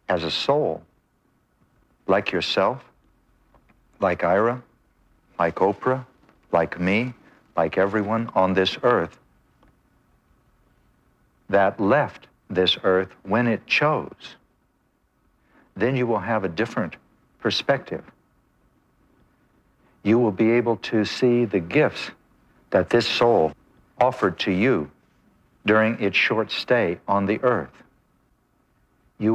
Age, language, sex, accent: 60-79, English, male, American